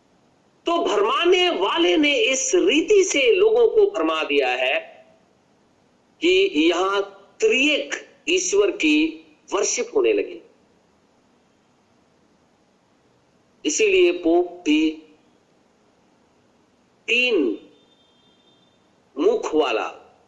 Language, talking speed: Hindi, 75 wpm